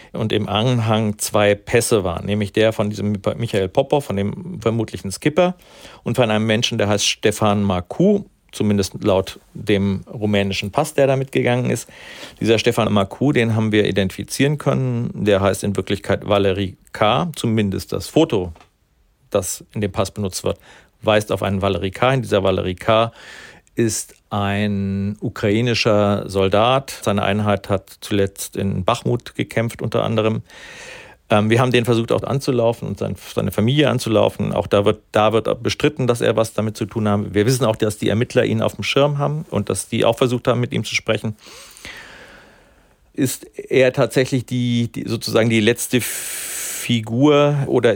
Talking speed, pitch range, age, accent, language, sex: 160 wpm, 100-120 Hz, 50-69, German, German, male